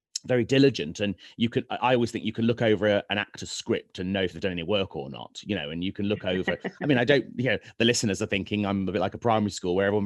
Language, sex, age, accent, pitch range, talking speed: English, male, 30-49, British, 100-145 Hz, 305 wpm